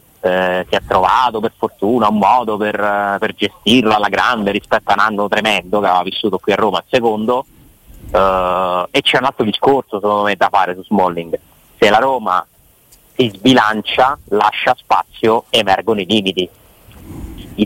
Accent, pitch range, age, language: native, 100-120 Hz, 30-49, Italian